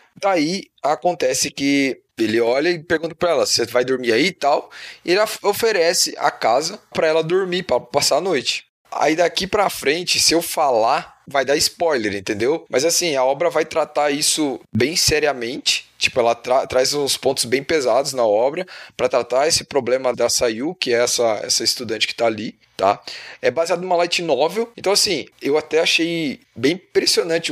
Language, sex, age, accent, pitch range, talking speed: Portuguese, male, 10-29, Brazilian, 135-175 Hz, 185 wpm